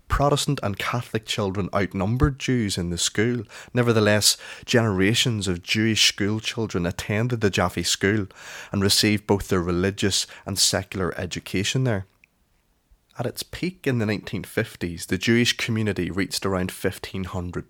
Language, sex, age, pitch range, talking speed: English, male, 20-39, 95-115 Hz, 135 wpm